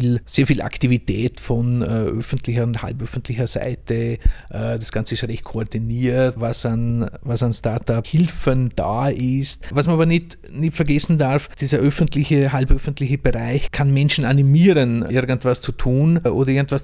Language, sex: German, male